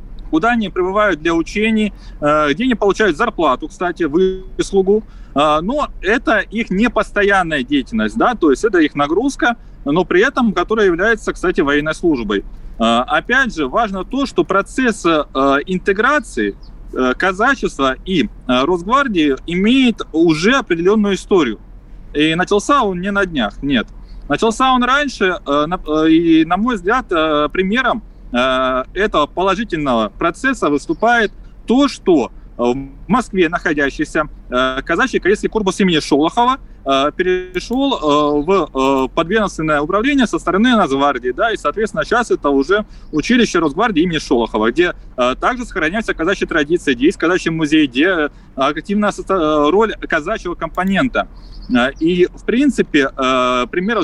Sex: male